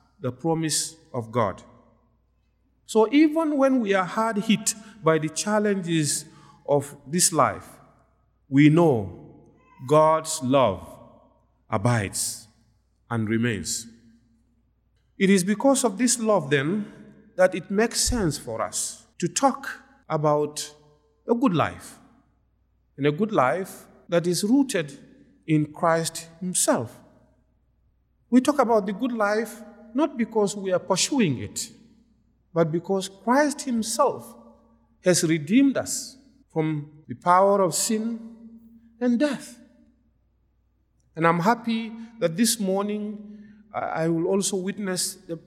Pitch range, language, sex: 155-230 Hz, English, male